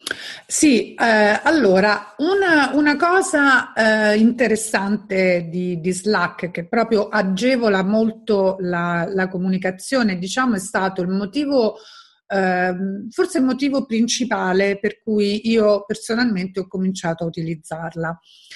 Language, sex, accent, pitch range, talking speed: Italian, female, native, 180-235 Hz, 115 wpm